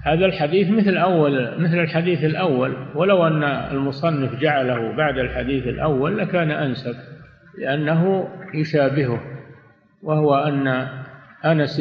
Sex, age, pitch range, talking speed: male, 50-69, 130-150 Hz, 105 wpm